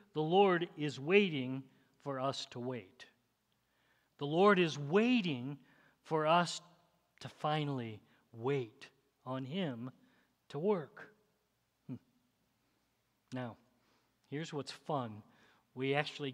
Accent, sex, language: American, male, English